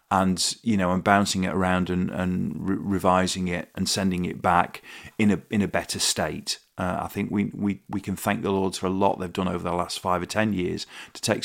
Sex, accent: male, British